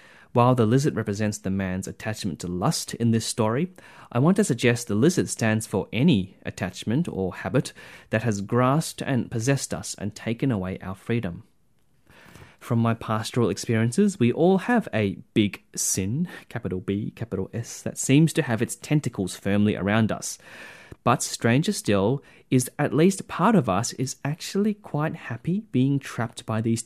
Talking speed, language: 170 wpm, English